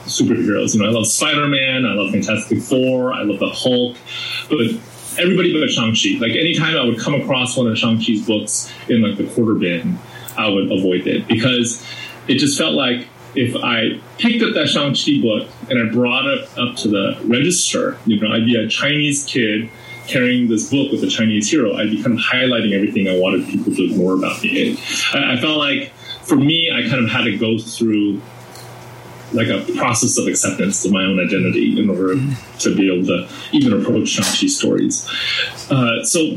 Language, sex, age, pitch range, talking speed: English, male, 20-39, 110-145 Hz, 200 wpm